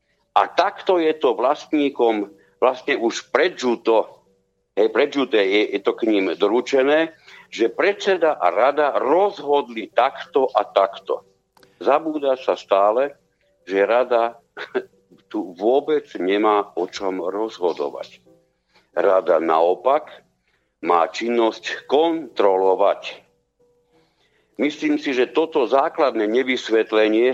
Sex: male